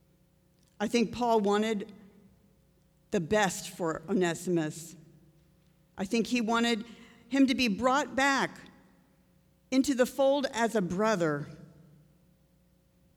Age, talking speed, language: 50-69, 105 wpm, English